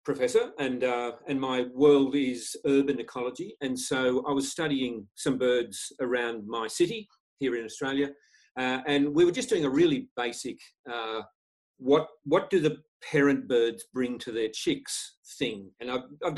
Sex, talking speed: male, 170 wpm